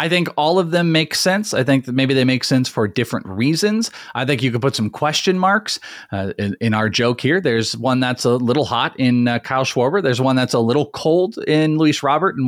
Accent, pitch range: American, 110-155 Hz